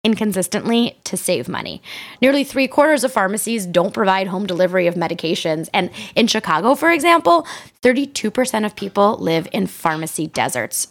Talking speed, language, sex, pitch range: 145 wpm, English, female, 180-255 Hz